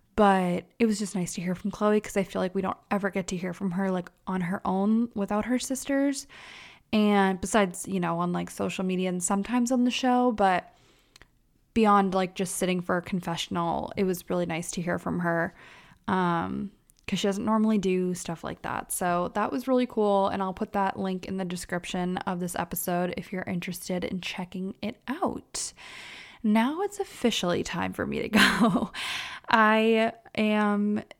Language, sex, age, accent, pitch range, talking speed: English, female, 20-39, American, 185-215 Hz, 190 wpm